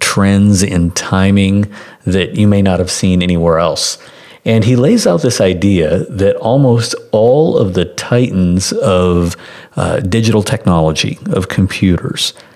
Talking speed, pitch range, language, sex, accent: 135 wpm, 90-105 Hz, English, male, American